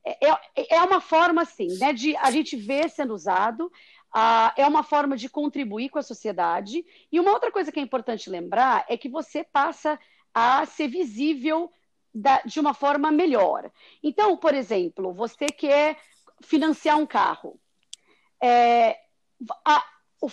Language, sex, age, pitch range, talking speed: Portuguese, female, 40-59, 240-315 Hz, 135 wpm